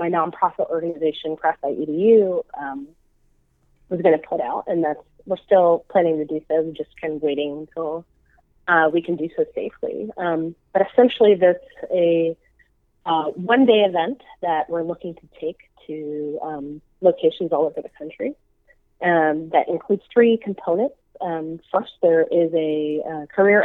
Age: 30-49